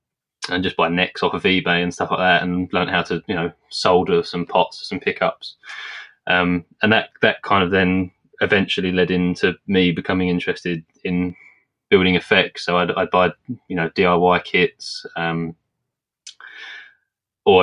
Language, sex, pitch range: English, male, 90-100 Hz